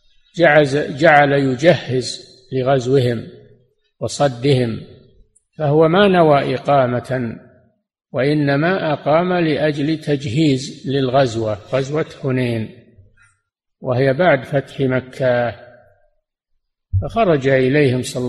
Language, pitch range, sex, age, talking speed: Arabic, 125-155 Hz, male, 50-69, 70 wpm